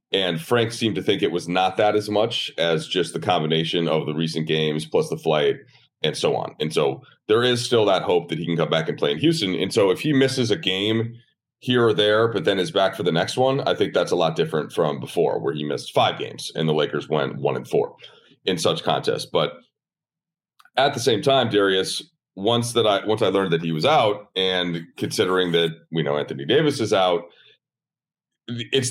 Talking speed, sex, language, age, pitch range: 220 wpm, male, English, 30-49, 85-125 Hz